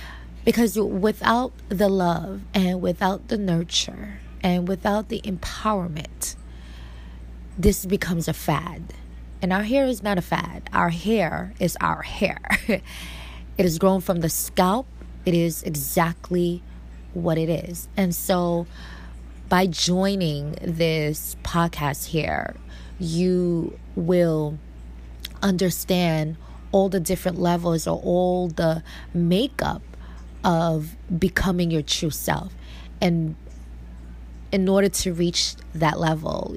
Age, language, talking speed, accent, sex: 20-39, English, 115 wpm, American, female